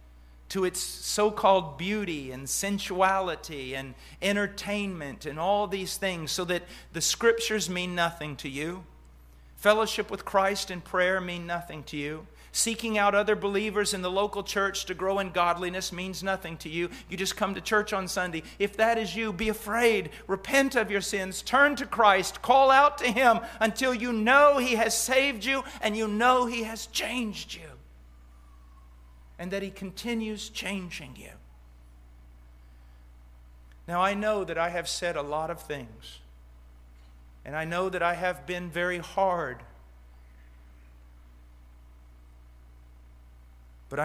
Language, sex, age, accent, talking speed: English, male, 50-69, American, 150 wpm